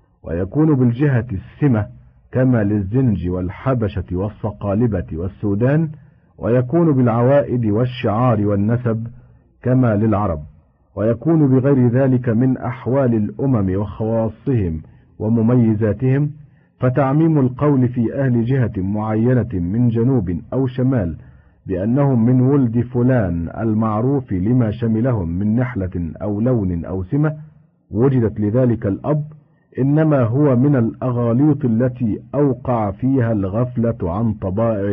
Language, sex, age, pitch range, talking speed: Arabic, male, 50-69, 95-125 Hz, 100 wpm